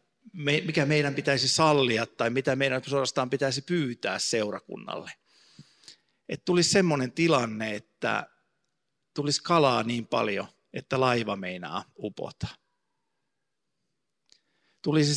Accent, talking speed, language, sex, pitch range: native, 105 wpm, Finnish, male, 115-145 Hz